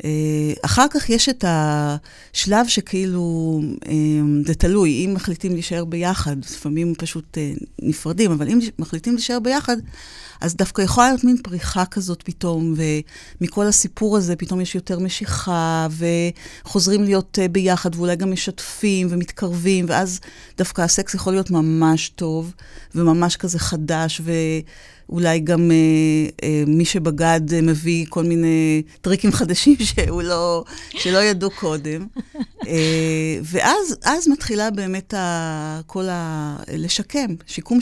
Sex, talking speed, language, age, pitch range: female, 125 wpm, Hebrew, 30-49, 160-200 Hz